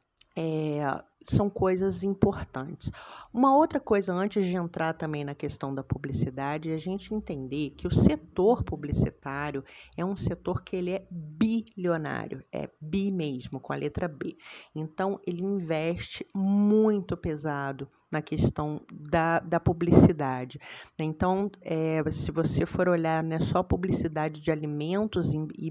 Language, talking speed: Portuguese, 135 wpm